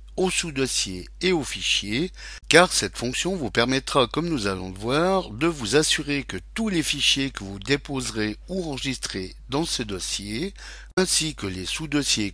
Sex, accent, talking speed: male, French, 165 wpm